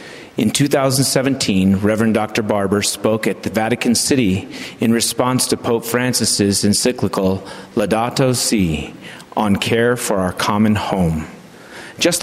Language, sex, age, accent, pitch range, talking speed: English, male, 40-59, American, 100-125 Hz, 125 wpm